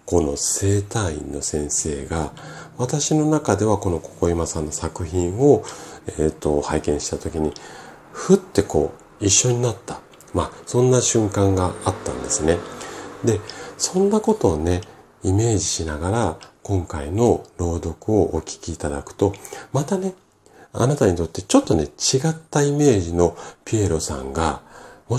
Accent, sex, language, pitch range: native, male, Japanese, 80-120 Hz